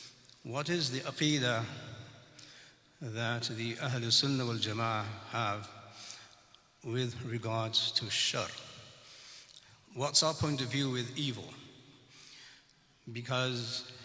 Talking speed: 95 wpm